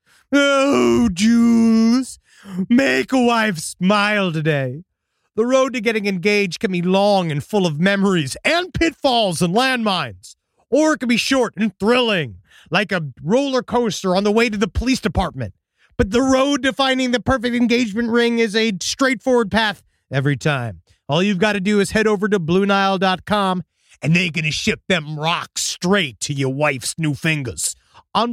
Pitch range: 160-235 Hz